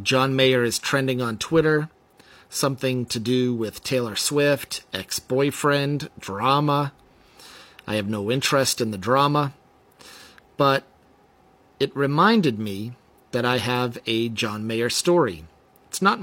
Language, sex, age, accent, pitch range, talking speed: English, male, 40-59, American, 115-140 Hz, 125 wpm